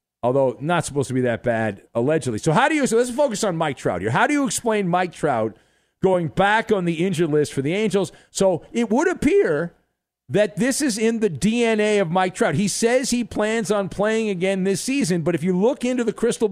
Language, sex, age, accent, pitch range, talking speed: English, male, 50-69, American, 155-225 Hz, 230 wpm